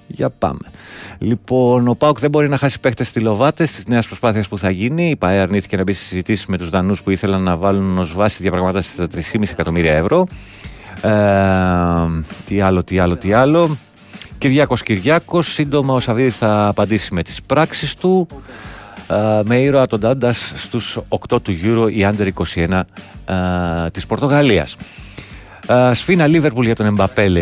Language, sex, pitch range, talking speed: Greek, male, 95-125 Hz, 170 wpm